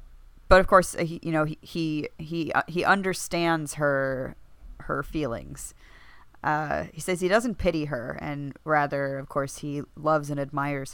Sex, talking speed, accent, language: female, 155 wpm, American, English